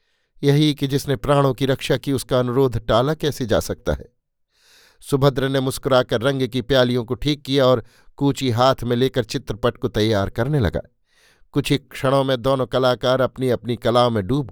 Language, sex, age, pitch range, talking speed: Hindi, male, 50-69, 120-135 Hz, 180 wpm